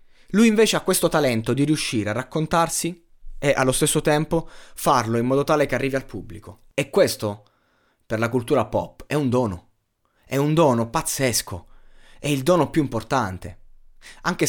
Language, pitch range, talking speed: Italian, 110-150 Hz, 165 wpm